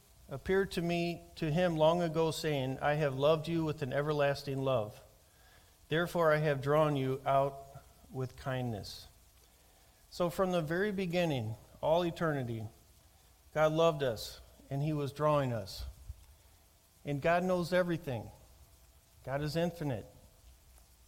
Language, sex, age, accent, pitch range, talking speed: English, male, 50-69, American, 95-160 Hz, 130 wpm